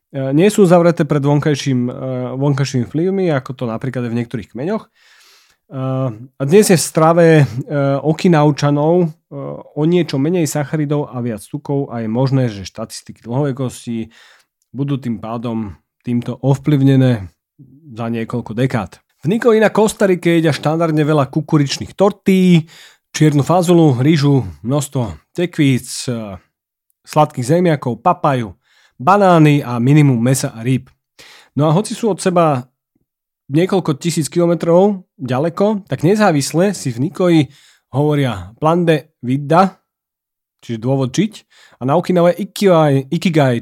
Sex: male